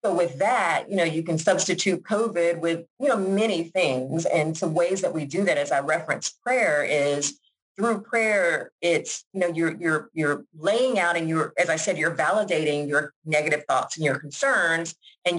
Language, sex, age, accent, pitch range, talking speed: English, female, 40-59, American, 150-195 Hz, 195 wpm